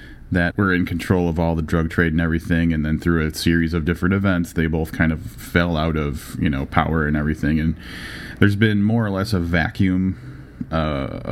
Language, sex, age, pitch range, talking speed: English, male, 30-49, 80-100 Hz, 210 wpm